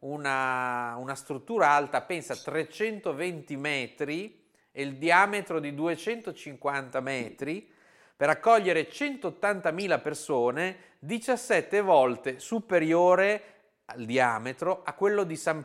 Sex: male